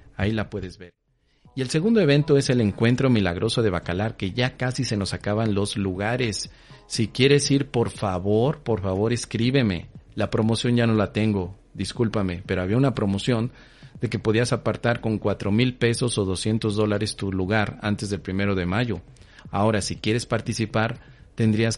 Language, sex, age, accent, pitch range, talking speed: Spanish, male, 40-59, Mexican, 100-125 Hz, 175 wpm